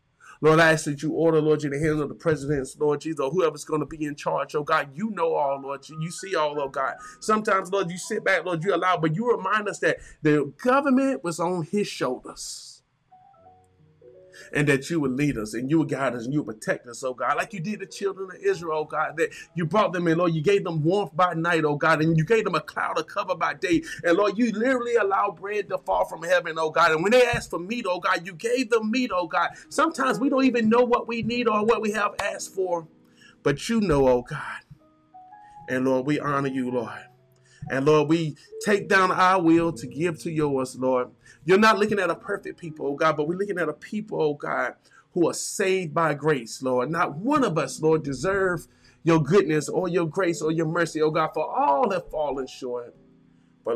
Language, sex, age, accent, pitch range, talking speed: English, male, 20-39, American, 140-190 Hz, 235 wpm